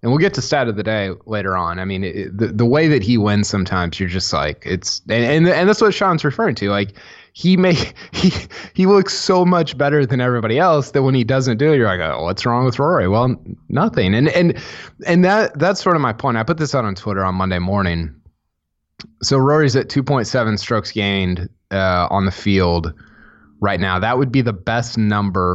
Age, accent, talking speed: 20-39, American, 225 wpm